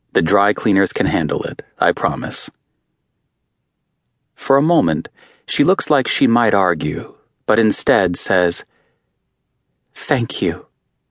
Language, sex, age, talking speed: English, male, 30-49, 120 wpm